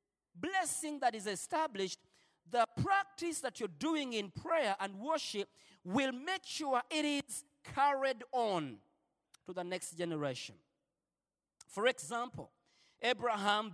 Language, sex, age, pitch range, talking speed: Swedish, male, 40-59, 180-270 Hz, 120 wpm